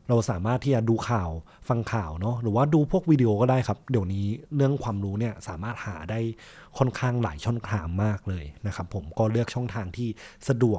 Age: 20-39